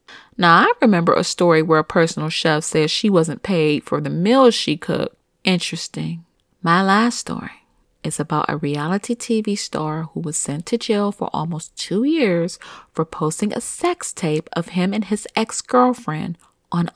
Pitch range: 165-215 Hz